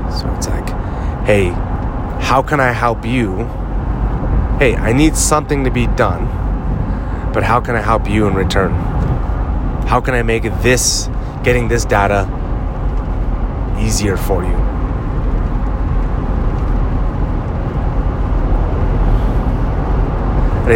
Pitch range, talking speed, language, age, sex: 90-115 Hz, 105 wpm, English, 30-49, male